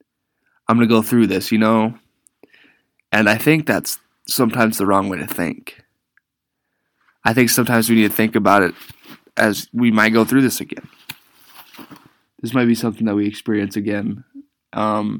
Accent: American